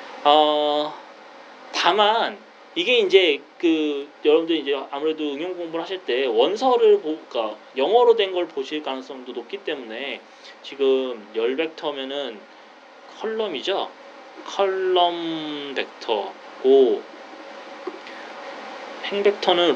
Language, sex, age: Korean, male, 30-49